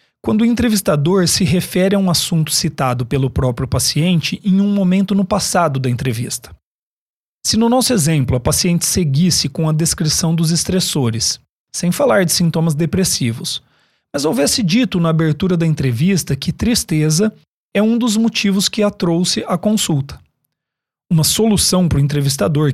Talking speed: 155 wpm